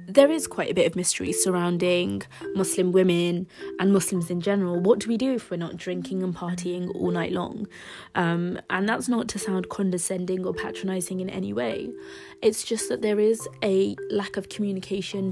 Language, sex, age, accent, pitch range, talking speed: English, female, 20-39, British, 175-215 Hz, 190 wpm